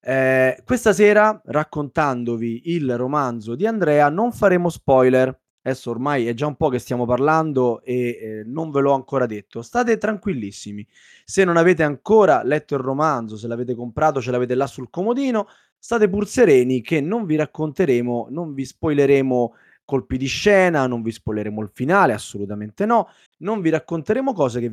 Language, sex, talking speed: Italian, male, 165 wpm